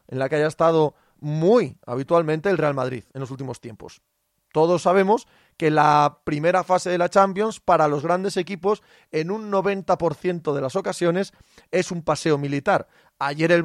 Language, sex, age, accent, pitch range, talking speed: Spanish, male, 30-49, Spanish, 155-195 Hz, 170 wpm